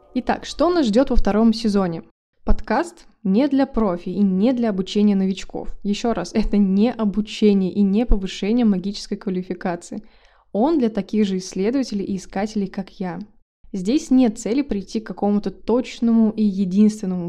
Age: 20-39